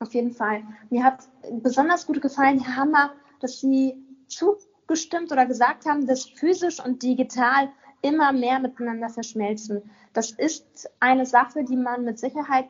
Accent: German